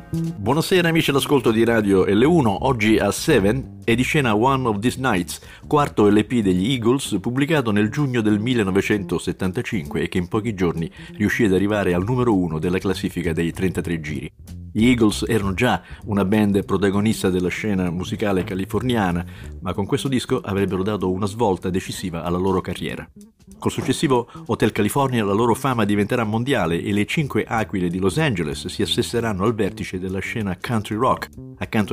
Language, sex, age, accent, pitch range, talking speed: Italian, male, 50-69, native, 95-125 Hz, 165 wpm